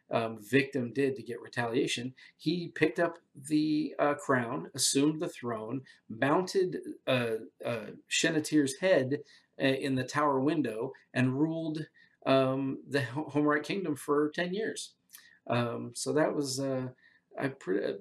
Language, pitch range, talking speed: English, 120-150 Hz, 125 wpm